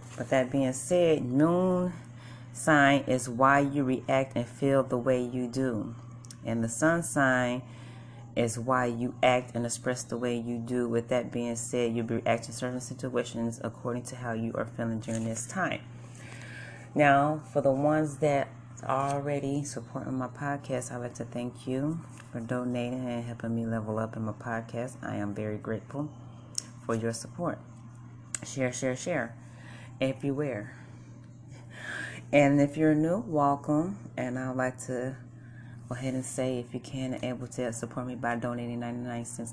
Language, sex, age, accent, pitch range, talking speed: English, female, 30-49, American, 120-130 Hz, 165 wpm